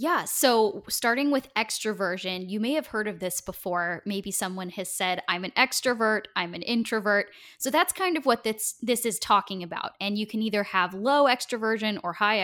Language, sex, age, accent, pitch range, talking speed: English, female, 10-29, American, 190-235 Hz, 200 wpm